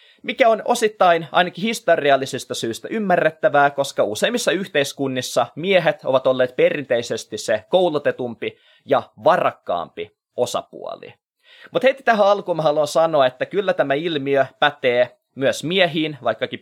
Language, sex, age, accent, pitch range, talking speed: Finnish, male, 20-39, native, 130-175 Hz, 120 wpm